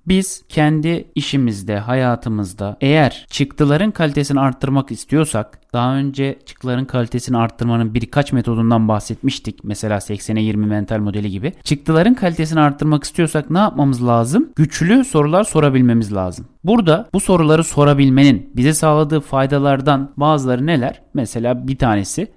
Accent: native